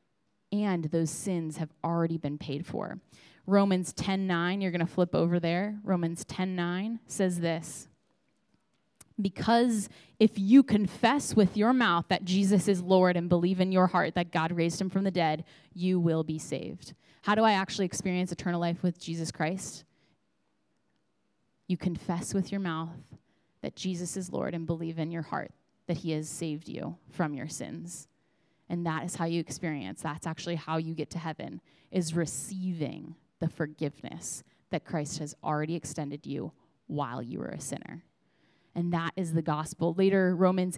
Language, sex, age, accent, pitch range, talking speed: English, female, 10-29, American, 160-190 Hz, 170 wpm